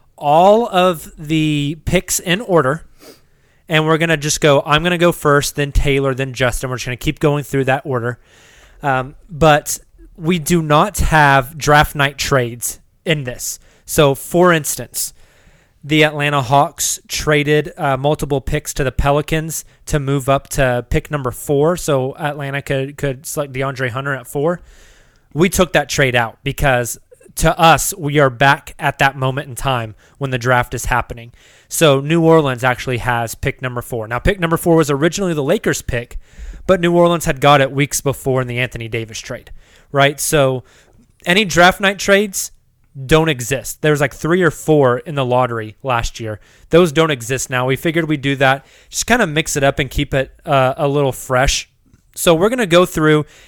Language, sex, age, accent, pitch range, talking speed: English, male, 20-39, American, 130-160 Hz, 190 wpm